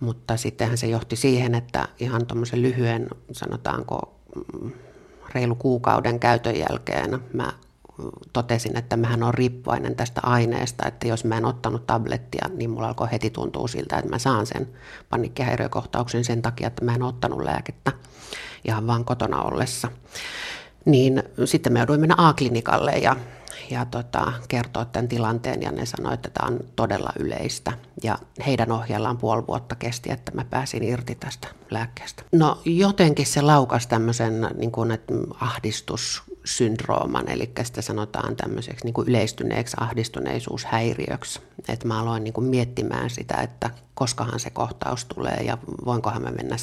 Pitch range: 115-125 Hz